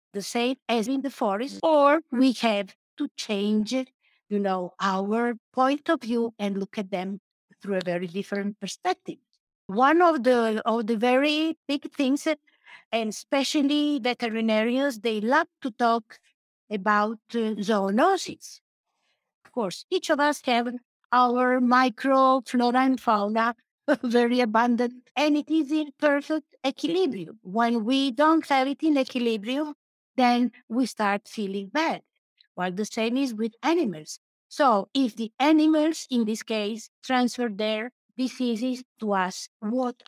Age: 50-69